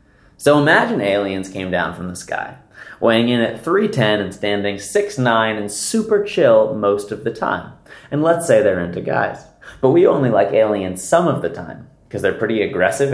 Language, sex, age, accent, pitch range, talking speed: English, male, 30-49, American, 105-140 Hz, 185 wpm